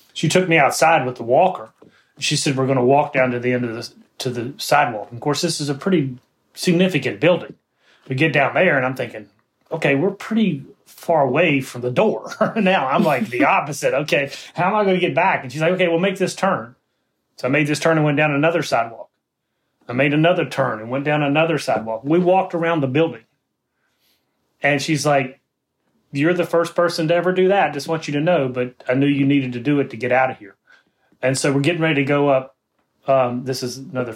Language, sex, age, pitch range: English, male, 30-49, 130-165 Hz